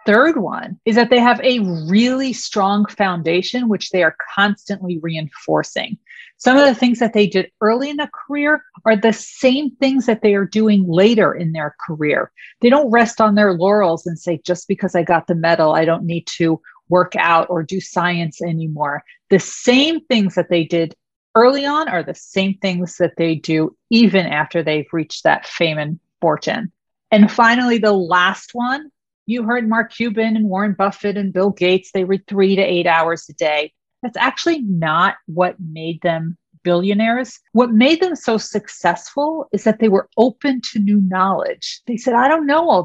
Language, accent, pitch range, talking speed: English, American, 175-240 Hz, 190 wpm